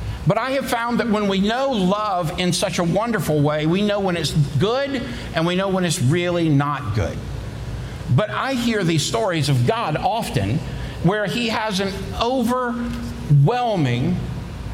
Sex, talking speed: male, 165 wpm